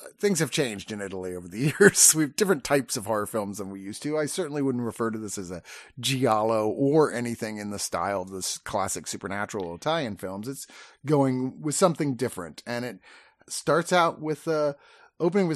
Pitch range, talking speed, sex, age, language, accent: 105-145 Hz, 205 wpm, male, 30-49, English, American